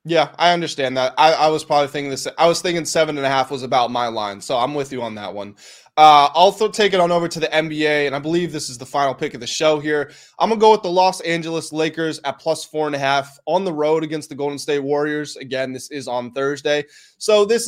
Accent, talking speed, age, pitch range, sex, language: American, 270 wpm, 20-39, 135-160 Hz, male, English